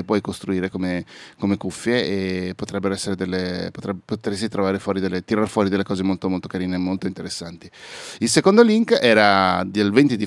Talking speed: 180 wpm